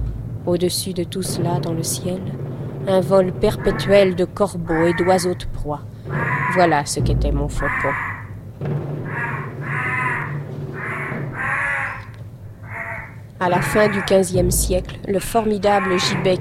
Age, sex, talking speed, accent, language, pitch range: 40-59, female, 110 wpm, French, French, 140-185 Hz